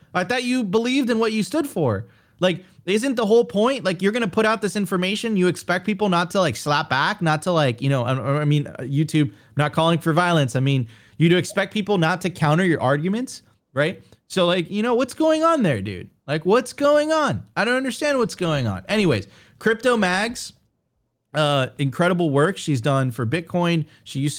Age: 30-49